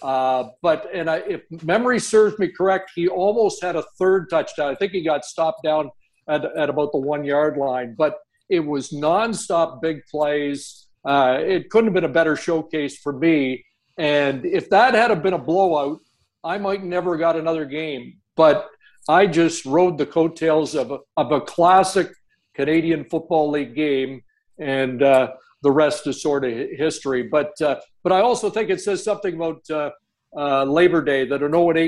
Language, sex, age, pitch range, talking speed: English, male, 60-79, 140-180 Hz, 185 wpm